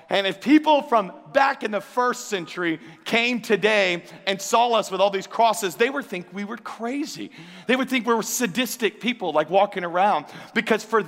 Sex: male